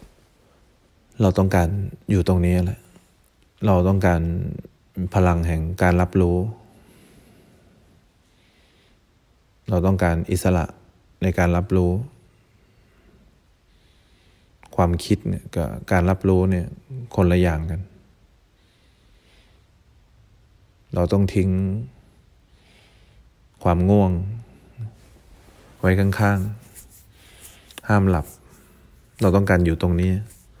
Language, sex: English, male